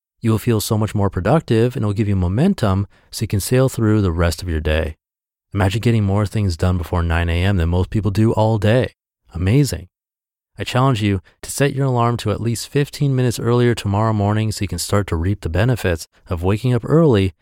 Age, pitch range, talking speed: 30-49, 90-115 Hz, 225 wpm